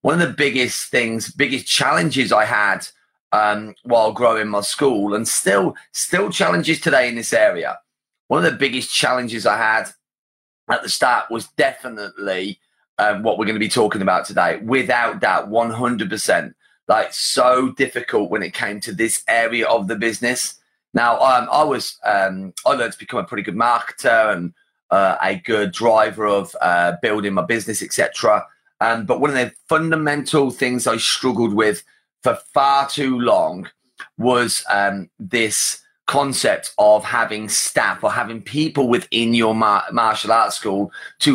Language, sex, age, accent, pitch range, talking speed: English, male, 30-49, British, 105-140 Hz, 165 wpm